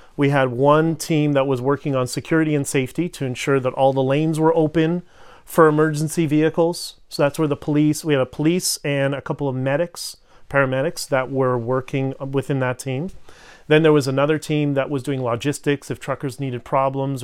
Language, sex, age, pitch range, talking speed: English, male, 30-49, 130-150 Hz, 195 wpm